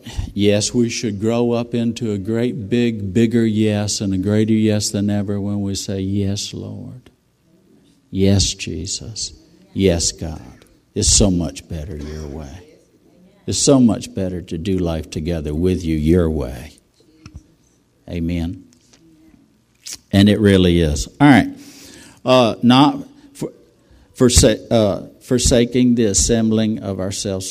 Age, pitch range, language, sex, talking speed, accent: 60-79, 90-110 Hz, English, male, 130 wpm, American